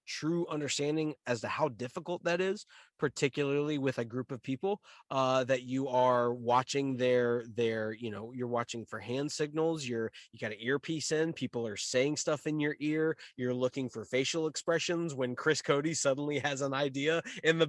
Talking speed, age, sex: 185 wpm, 20-39, male